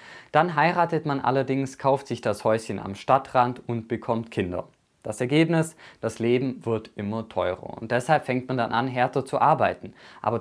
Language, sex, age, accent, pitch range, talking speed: German, male, 20-39, German, 105-130 Hz, 175 wpm